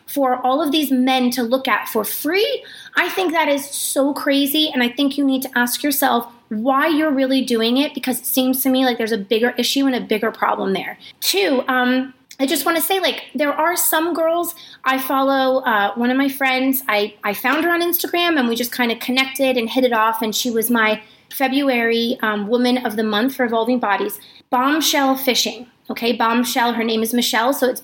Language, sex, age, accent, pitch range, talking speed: English, female, 30-49, American, 230-280 Hz, 220 wpm